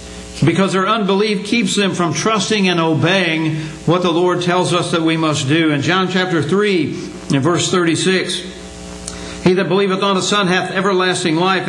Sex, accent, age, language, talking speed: male, American, 60-79, English, 170 wpm